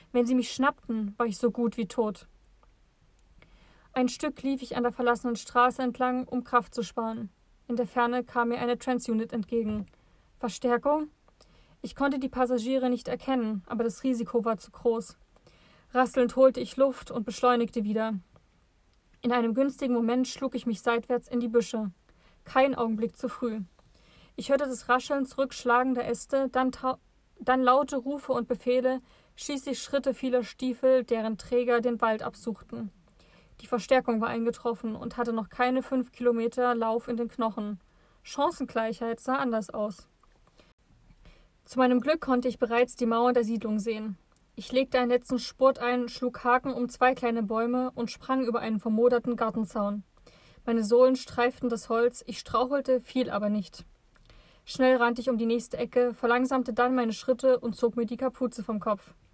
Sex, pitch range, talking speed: female, 230-255 Hz, 165 wpm